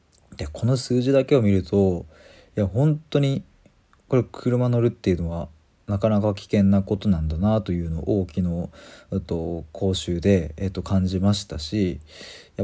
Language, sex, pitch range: Japanese, male, 85-105 Hz